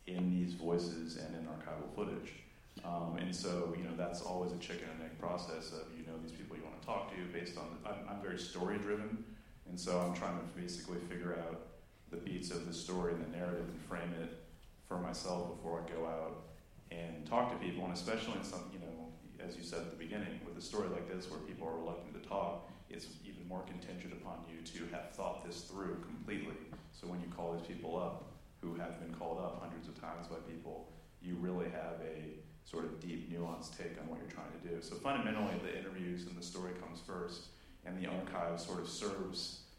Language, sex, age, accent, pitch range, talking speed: English, male, 30-49, American, 85-90 Hz, 225 wpm